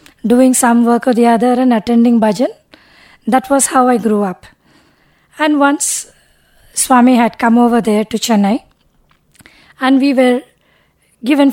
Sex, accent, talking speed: female, Indian, 145 wpm